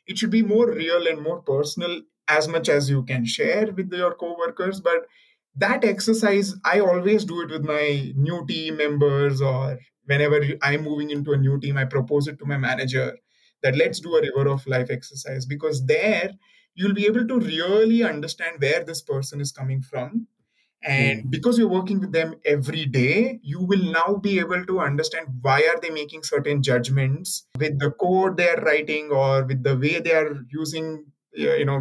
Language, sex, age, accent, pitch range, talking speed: English, male, 20-39, Indian, 140-180 Hz, 190 wpm